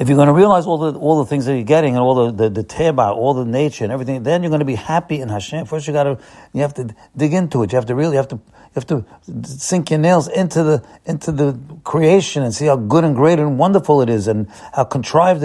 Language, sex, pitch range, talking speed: English, male, 115-150 Hz, 280 wpm